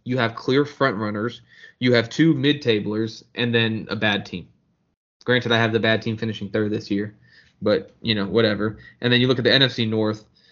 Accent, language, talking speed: American, English, 205 wpm